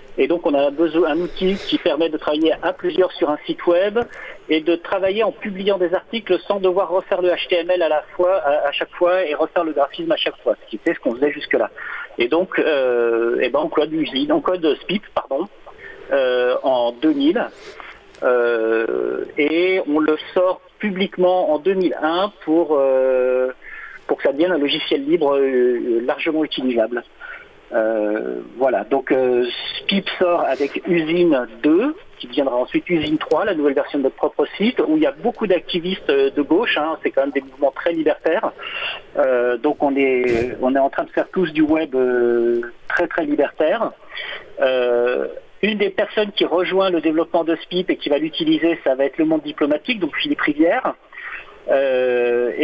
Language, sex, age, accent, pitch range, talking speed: French, male, 50-69, French, 145-205 Hz, 180 wpm